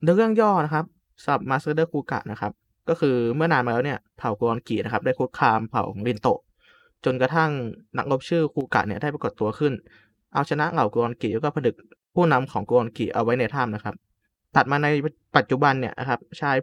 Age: 20-39